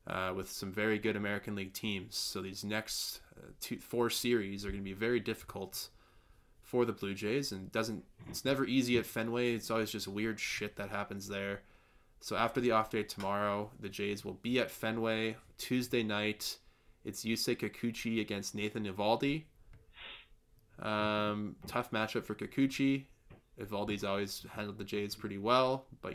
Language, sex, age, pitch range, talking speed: English, male, 20-39, 100-115 Hz, 170 wpm